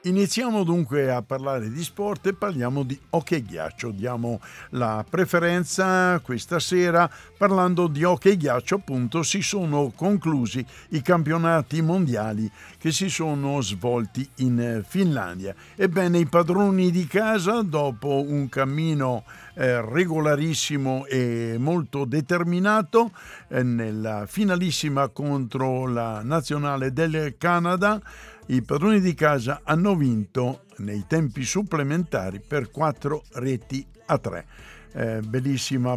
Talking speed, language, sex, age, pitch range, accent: 115 wpm, Italian, male, 60-79, 120-160 Hz, native